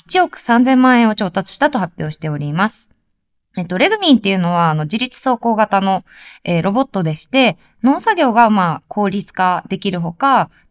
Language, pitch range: Japanese, 170-255 Hz